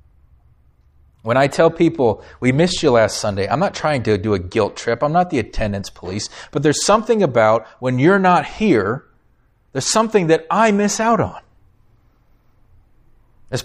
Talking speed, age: 165 wpm, 40-59